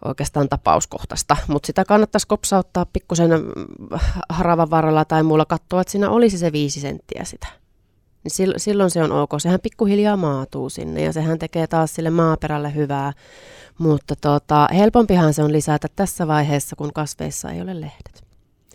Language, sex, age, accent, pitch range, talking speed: Finnish, female, 30-49, native, 140-170 Hz, 150 wpm